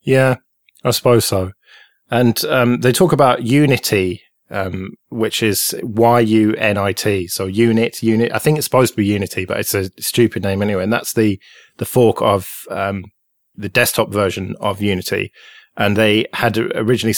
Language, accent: English, British